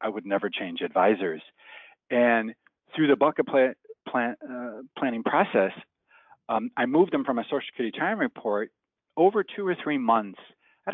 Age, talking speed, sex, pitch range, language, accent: 40-59, 155 wpm, male, 105-145 Hz, English, American